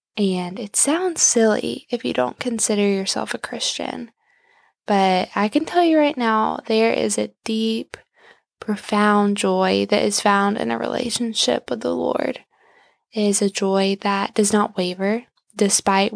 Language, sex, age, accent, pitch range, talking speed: English, female, 10-29, American, 205-250 Hz, 155 wpm